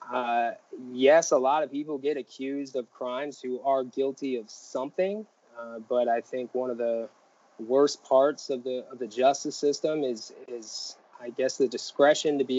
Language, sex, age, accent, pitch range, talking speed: English, male, 20-39, American, 120-140 Hz, 180 wpm